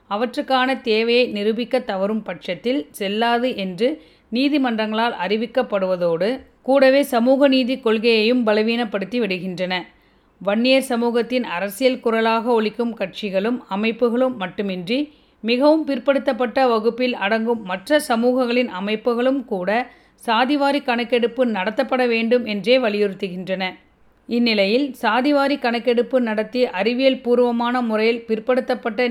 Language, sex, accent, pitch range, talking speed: Tamil, female, native, 215-255 Hz, 95 wpm